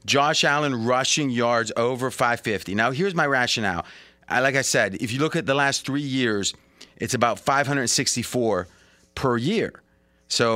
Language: English